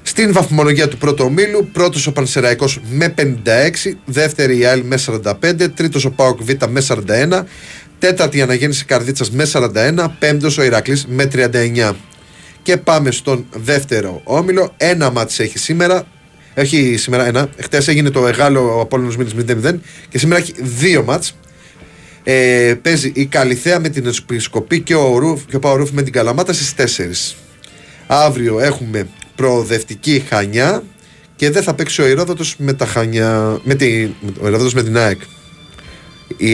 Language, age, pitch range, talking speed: Greek, 30-49, 120-155 Hz, 155 wpm